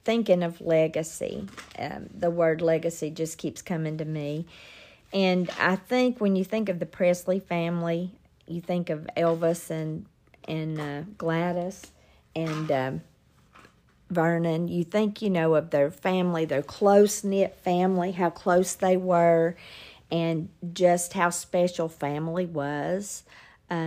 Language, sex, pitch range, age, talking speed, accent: English, female, 155-180 Hz, 50-69, 135 wpm, American